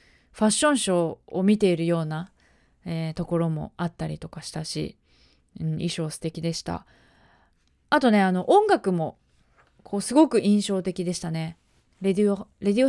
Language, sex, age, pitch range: Japanese, female, 20-39, 160-205 Hz